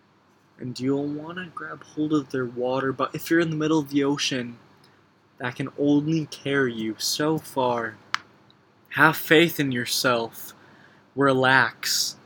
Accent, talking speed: American, 145 wpm